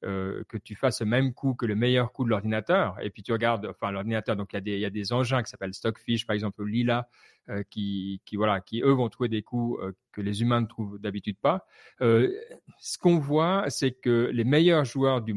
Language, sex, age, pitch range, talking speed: French, male, 40-59, 105-125 Hz, 235 wpm